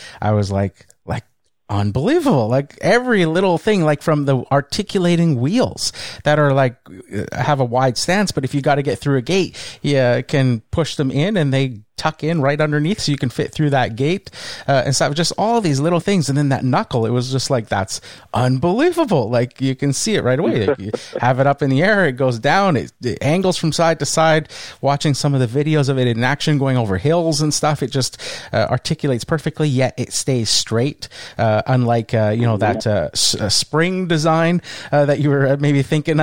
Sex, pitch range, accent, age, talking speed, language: male, 120-150 Hz, American, 30-49, 215 wpm, English